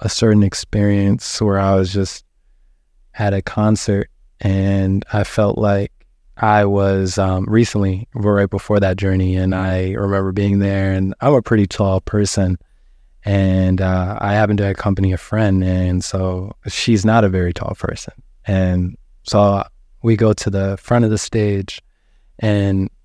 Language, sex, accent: English, male, American